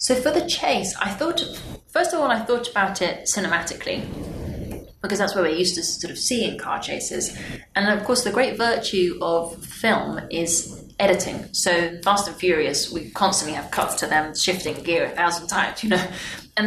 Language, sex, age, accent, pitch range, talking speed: English, female, 20-39, British, 165-200 Hz, 190 wpm